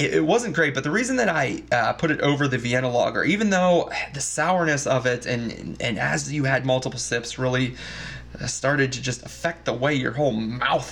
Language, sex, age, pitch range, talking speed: English, male, 20-39, 120-165 Hz, 210 wpm